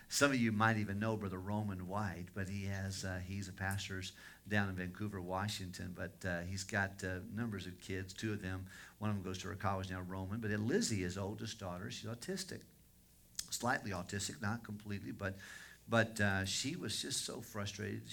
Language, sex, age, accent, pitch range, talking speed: English, male, 50-69, American, 95-115 Hz, 195 wpm